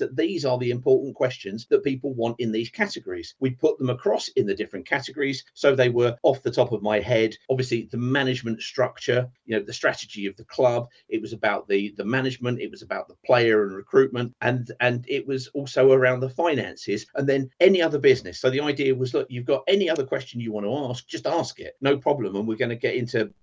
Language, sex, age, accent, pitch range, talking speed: English, male, 40-59, British, 110-135 Hz, 235 wpm